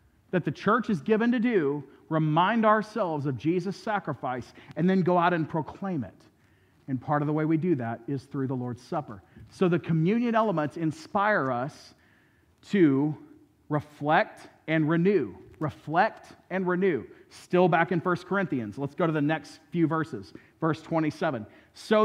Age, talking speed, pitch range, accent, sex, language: 40-59, 165 wpm, 150-200 Hz, American, male, English